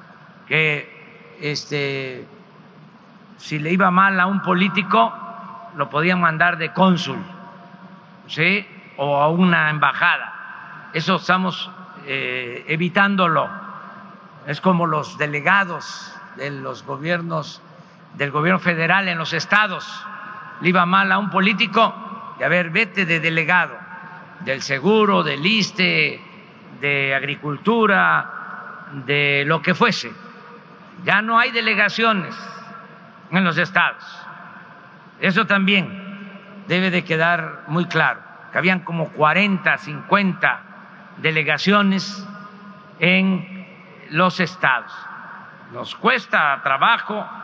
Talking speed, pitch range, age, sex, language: 105 wpm, 165-205 Hz, 50-69, male, Spanish